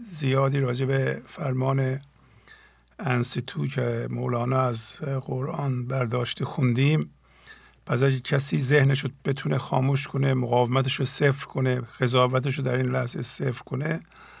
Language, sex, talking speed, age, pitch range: English, male, 110 wpm, 50-69, 125-140 Hz